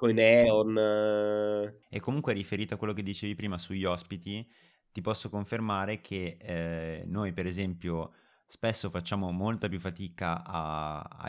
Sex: male